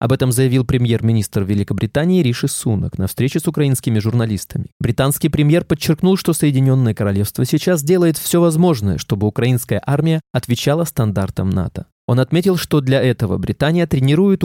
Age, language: 20-39, Russian